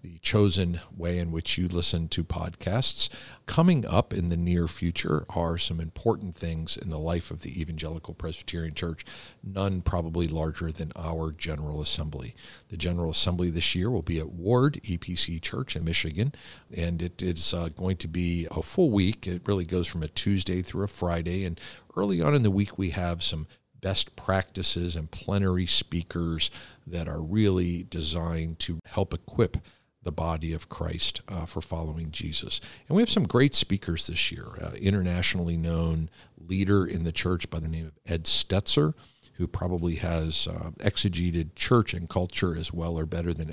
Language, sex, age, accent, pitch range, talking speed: English, male, 50-69, American, 80-95 Hz, 175 wpm